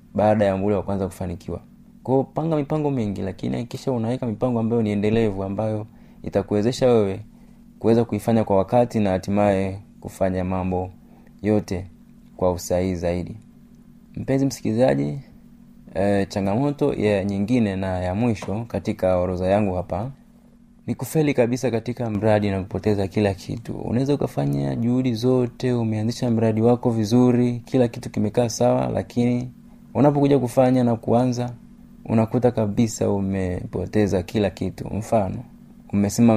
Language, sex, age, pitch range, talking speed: Swahili, male, 30-49, 100-125 Hz, 130 wpm